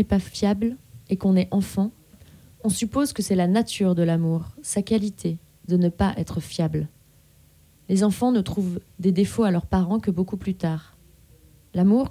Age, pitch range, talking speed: 20-39, 170-200 Hz, 175 wpm